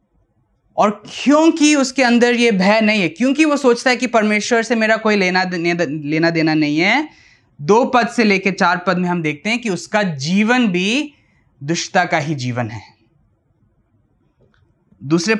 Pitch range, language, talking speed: 170-245 Hz, Hindi, 165 wpm